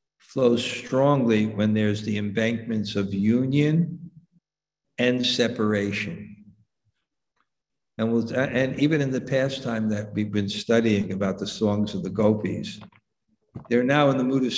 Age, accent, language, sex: 60-79, American, English, male